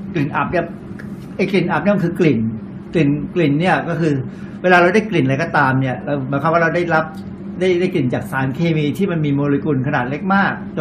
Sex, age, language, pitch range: male, 60-79, Thai, 140-180 Hz